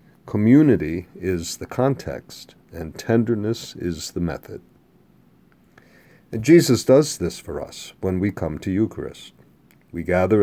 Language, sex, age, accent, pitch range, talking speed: English, male, 50-69, American, 85-110 Hz, 125 wpm